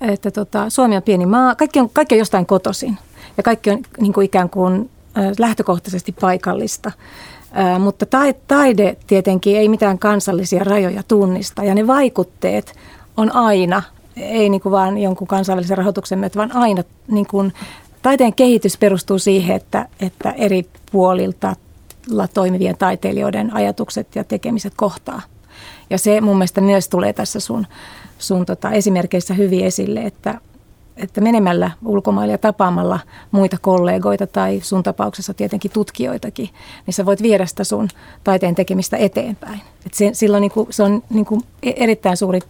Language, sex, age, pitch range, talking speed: Finnish, female, 30-49, 185-215 Hz, 145 wpm